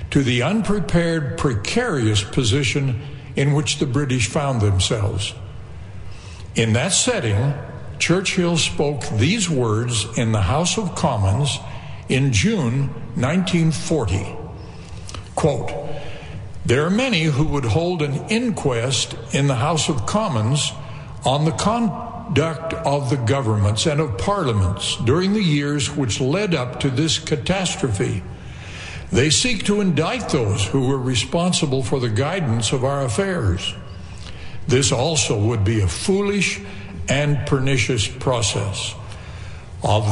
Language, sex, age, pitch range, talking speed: English, male, 60-79, 105-160 Hz, 125 wpm